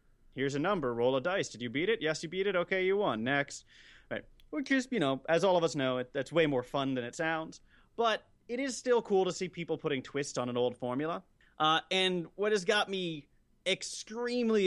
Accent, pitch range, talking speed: American, 135-185 Hz, 225 wpm